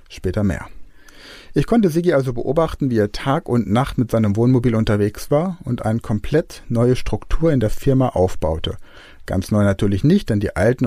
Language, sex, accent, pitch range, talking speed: German, male, German, 100-130 Hz, 180 wpm